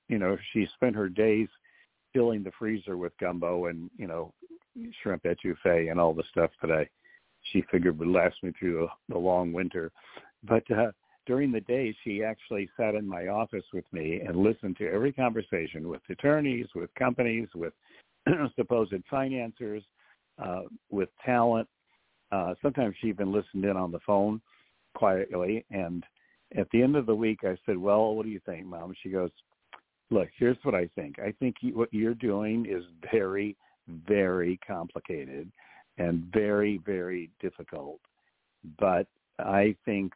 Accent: American